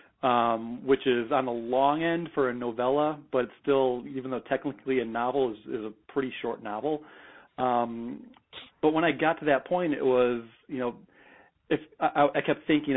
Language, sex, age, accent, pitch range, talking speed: English, male, 40-59, American, 115-140 Hz, 185 wpm